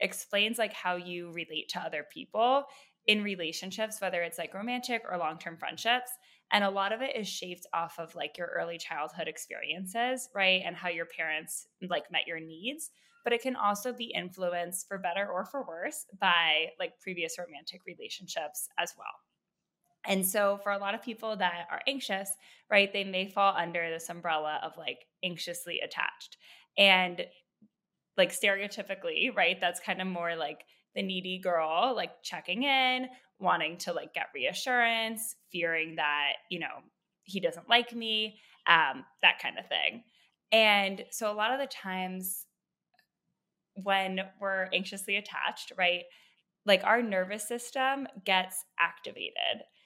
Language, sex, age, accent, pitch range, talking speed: English, female, 10-29, American, 175-220 Hz, 155 wpm